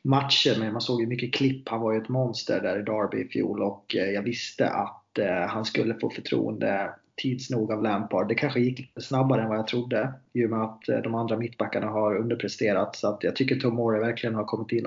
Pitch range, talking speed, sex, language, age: 110-135 Hz, 210 wpm, male, Swedish, 30-49